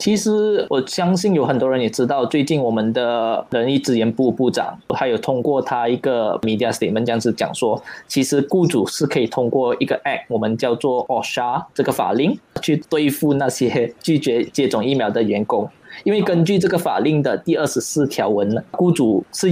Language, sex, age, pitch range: Chinese, male, 20-39, 120-165 Hz